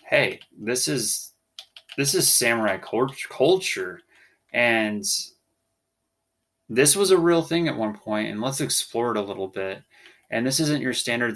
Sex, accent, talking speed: male, American, 155 wpm